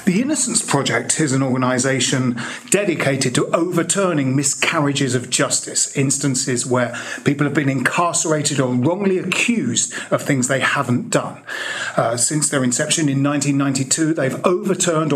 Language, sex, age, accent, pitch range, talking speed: English, male, 40-59, British, 140-195 Hz, 135 wpm